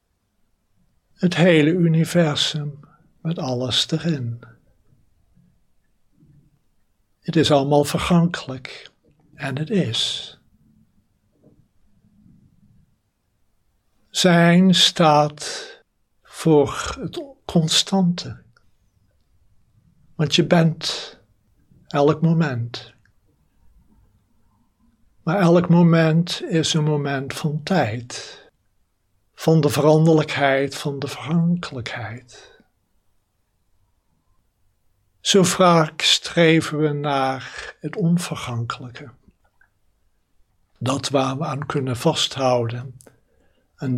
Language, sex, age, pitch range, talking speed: Dutch, male, 60-79, 105-160 Hz, 70 wpm